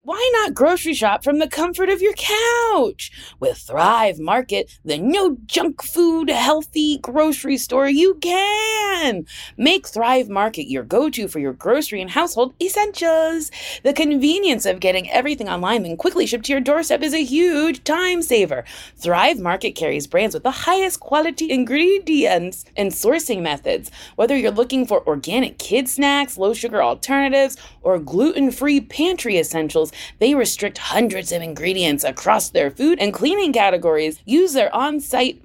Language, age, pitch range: English, 20-39, 220-330 Hz